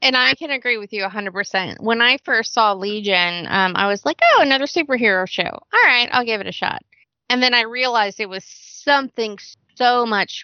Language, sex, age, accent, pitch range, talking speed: English, female, 20-39, American, 195-245 Hz, 205 wpm